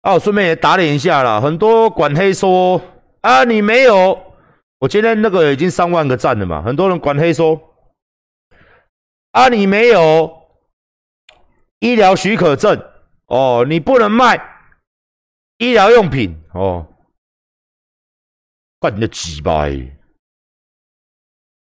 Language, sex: Chinese, male